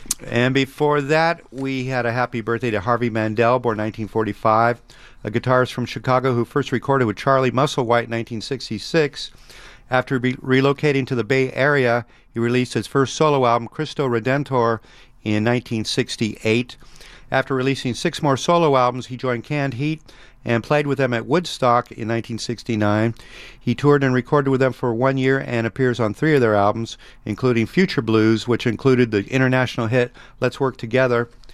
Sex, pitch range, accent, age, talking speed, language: male, 115-135 Hz, American, 40-59, 165 wpm, English